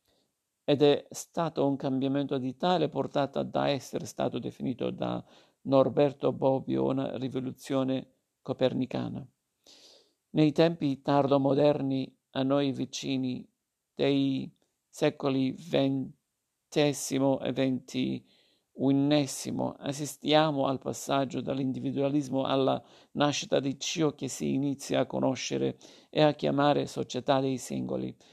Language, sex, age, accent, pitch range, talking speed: Italian, male, 50-69, native, 130-140 Hz, 105 wpm